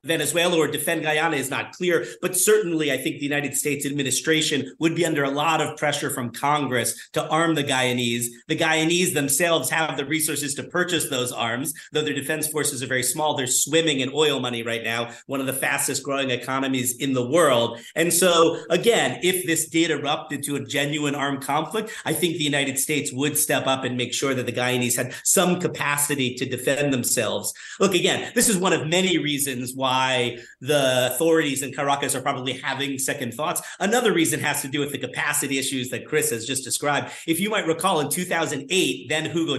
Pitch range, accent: 130-160 Hz, American